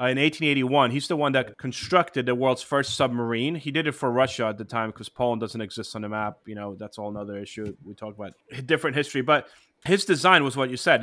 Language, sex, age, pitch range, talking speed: English, male, 30-49, 115-145 Hz, 245 wpm